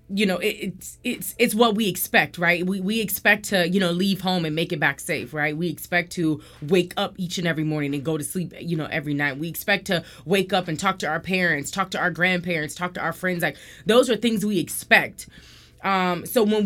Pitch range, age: 165-195 Hz, 20-39